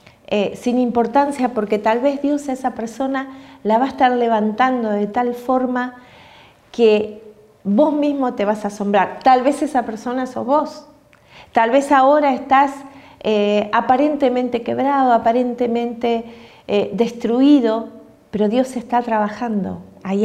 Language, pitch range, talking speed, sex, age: Spanish, 210-275 Hz, 135 wpm, female, 40-59